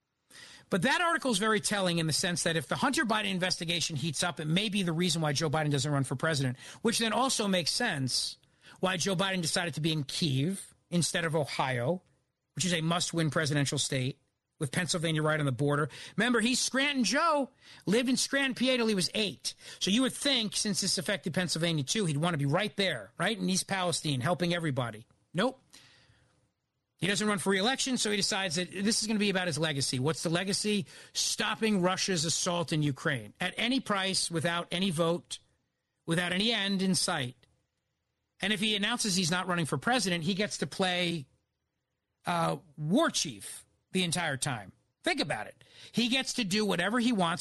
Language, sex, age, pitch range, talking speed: English, male, 40-59, 150-210 Hz, 195 wpm